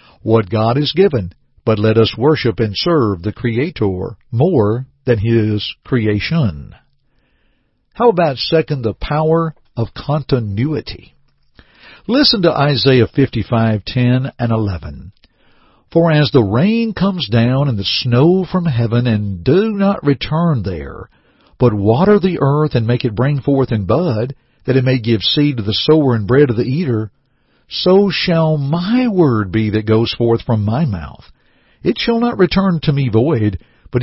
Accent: American